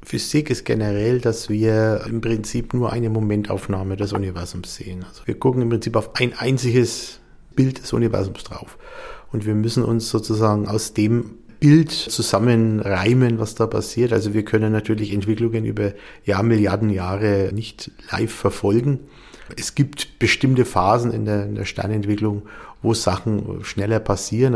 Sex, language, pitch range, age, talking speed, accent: male, German, 105-120 Hz, 50-69, 150 wpm, German